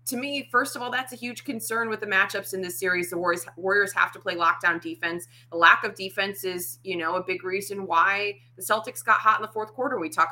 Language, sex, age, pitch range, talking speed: English, female, 20-39, 165-205 Hz, 250 wpm